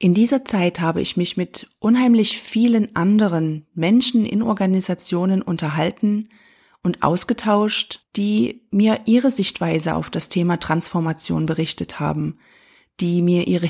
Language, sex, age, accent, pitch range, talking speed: German, female, 40-59, German, 165-220 Hz, 125 wpm